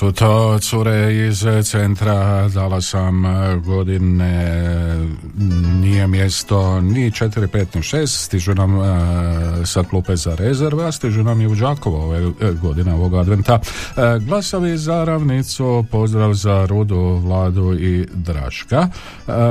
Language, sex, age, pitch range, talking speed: Croatian, male, 50-69, 90-110 Hz, 120 wpm